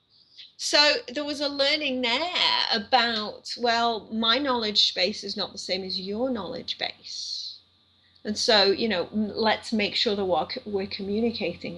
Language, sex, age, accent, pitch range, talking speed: English, female, 40-59, British, 185-245 Hz, 155 wpm